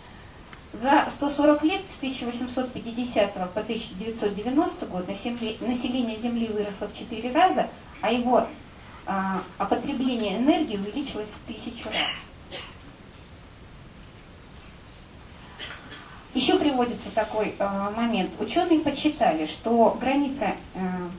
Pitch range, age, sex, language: 185-265 Hz, 20-39, female, Russian